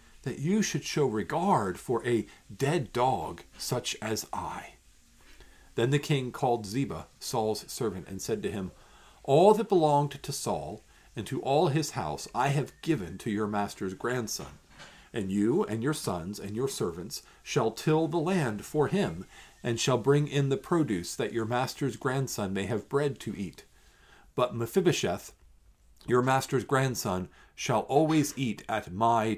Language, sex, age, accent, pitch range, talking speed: English, male, 50-69, American, 105-140 Hz, 160 wpm